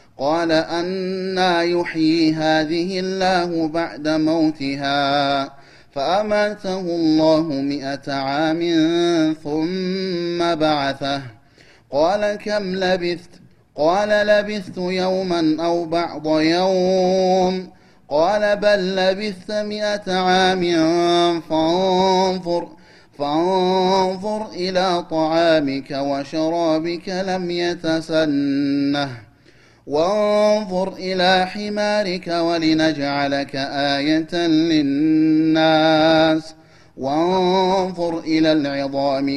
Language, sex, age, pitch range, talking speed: Amharic, male, 30-49, 155-185 Hz, 65 wpm